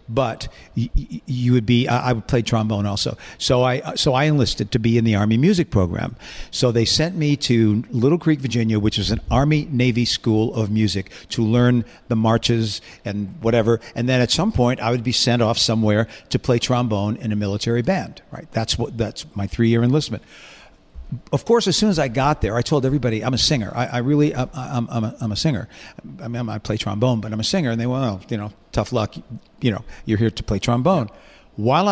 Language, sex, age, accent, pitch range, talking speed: English, male, 50-69, American, 110-130 Hz, 215 wpm